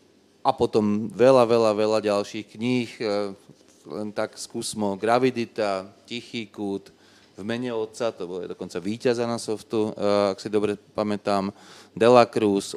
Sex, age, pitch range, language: male, 30-49, 100-115 Hz, Slovak